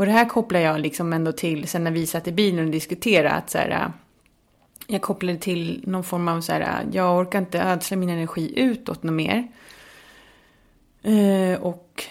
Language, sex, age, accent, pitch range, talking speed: English, female, 30-49, Swedish, 165-190 Hz, 180 wpm